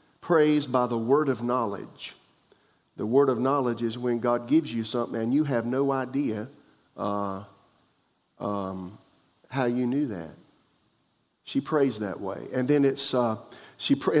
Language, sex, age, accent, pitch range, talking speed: English, male, 50-69, American, 115-140 Hz, 155 wpm